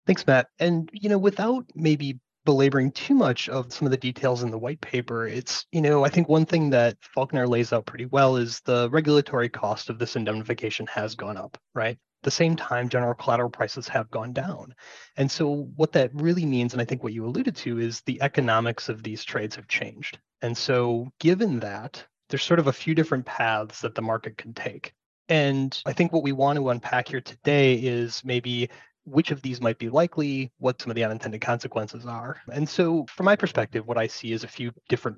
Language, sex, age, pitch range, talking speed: English, male, 30-49, 115-140 Hz, 215 wpm